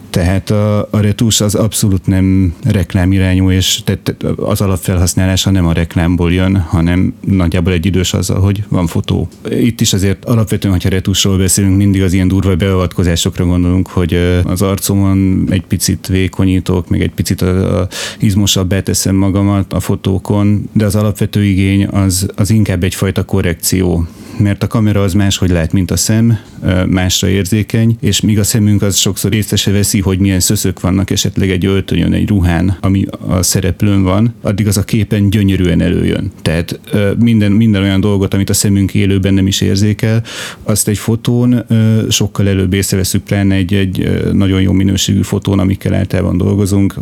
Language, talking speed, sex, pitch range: Hungarian, 160 wpm, male, 95-105 Hz